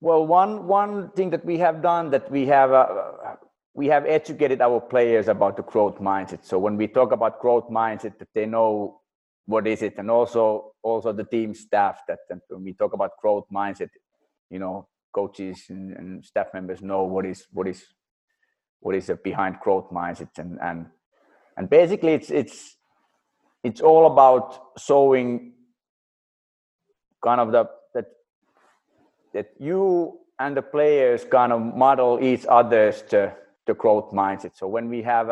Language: English